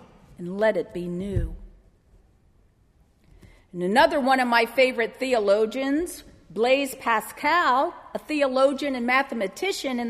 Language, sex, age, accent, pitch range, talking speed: English, female, 50-69, American, 190-275 Hz, 115 wpm